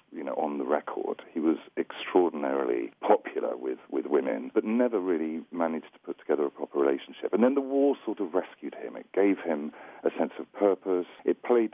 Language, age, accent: English, 40-59, British